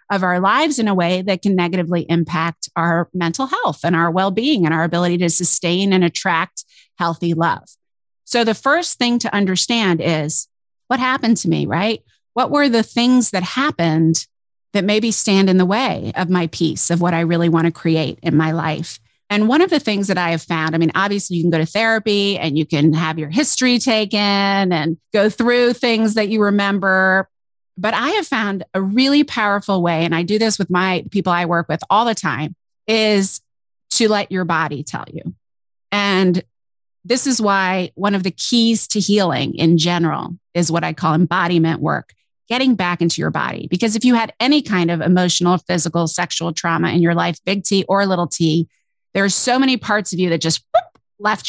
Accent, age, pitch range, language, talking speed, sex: American, 30-49, 170-215 Hz, English, 200 wpm, female